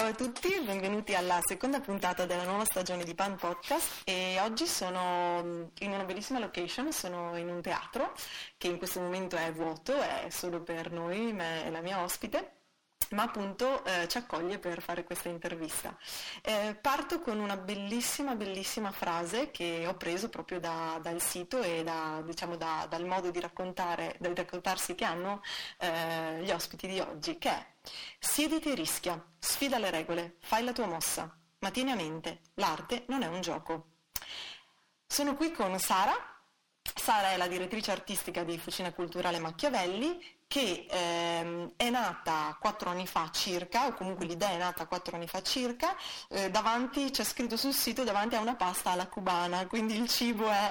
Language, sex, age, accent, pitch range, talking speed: Italian, female, 20-39, native, 175-225 Hz, 170 wpm